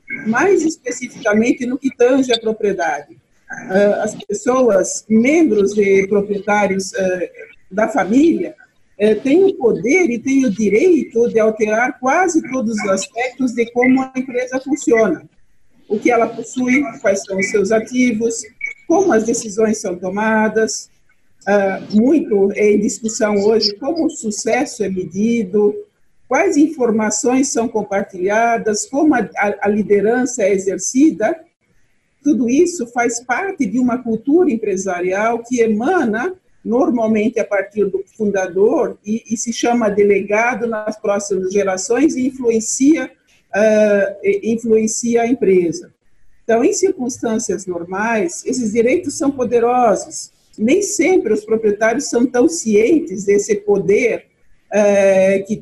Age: 50-69